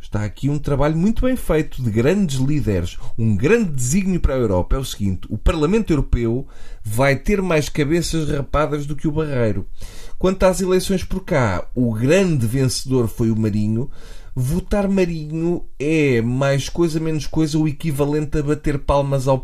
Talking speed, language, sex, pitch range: 170 wpm, Portuguese, male, 115-165 Hz